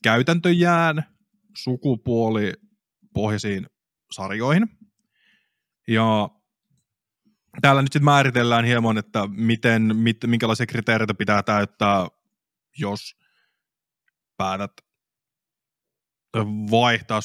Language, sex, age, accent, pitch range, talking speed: Finnish, male, 20-39, native, 105-130 Hz, 75 wpm